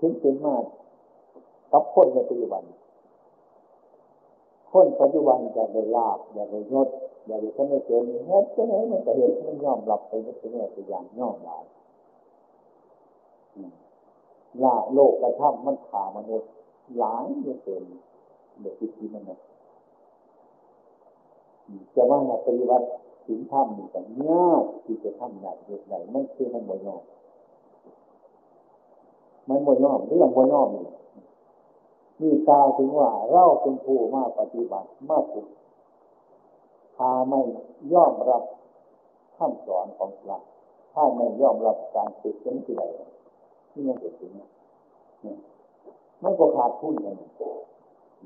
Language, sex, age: Chinese, male, 60-79